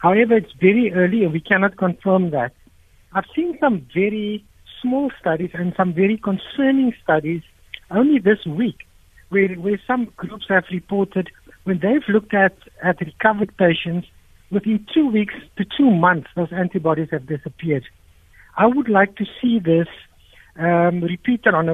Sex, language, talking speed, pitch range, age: male, English, 150 wpm, 170-210 Hz, 60-79